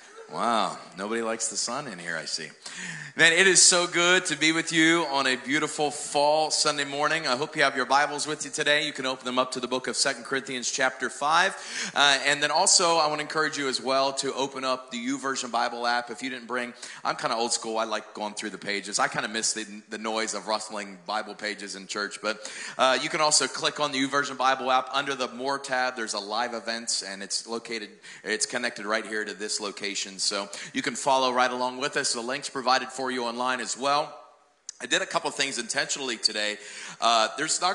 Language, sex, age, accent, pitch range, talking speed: English, male, 40-59, American, 115-150 Hz, 235 wpm